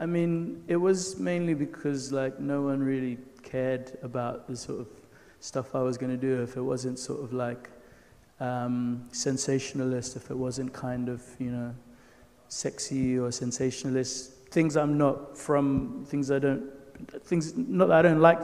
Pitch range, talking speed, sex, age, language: 125-140 Hz, 170 wpm, male, 20-39, English